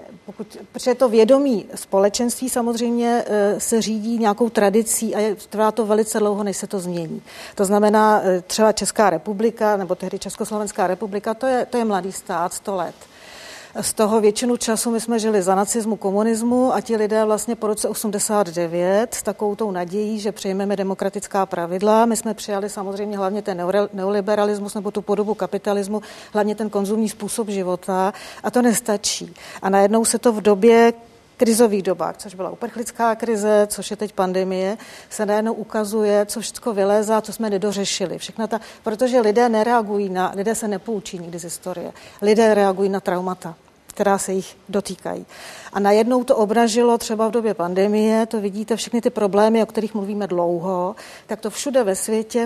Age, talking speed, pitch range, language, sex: 40-59, 170 wpm, 195-225 Hz, Czech, female